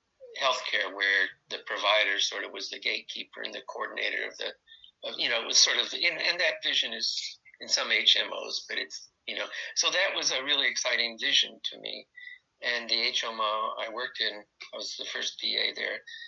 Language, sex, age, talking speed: English, male, 50-69, 200 wpm